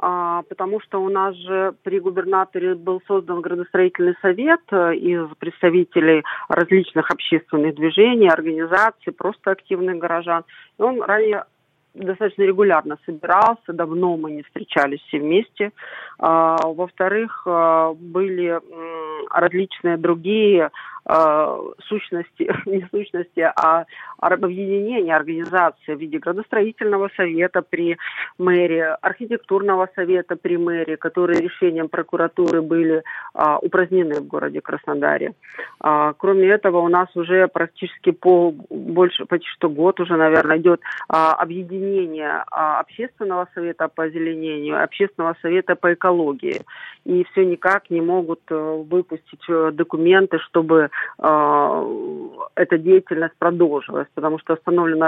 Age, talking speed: 40-59, 105 wpm